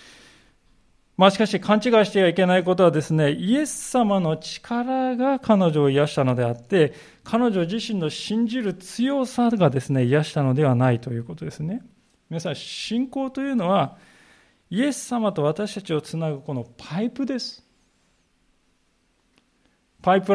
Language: Japanese